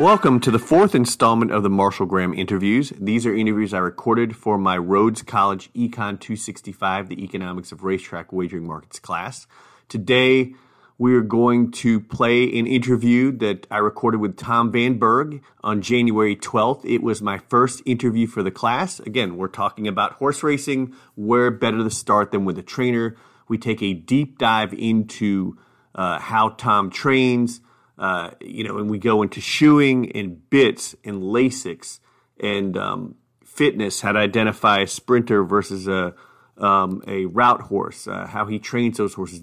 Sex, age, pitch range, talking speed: male, 30-49, 105-125 Hz, 165 wpm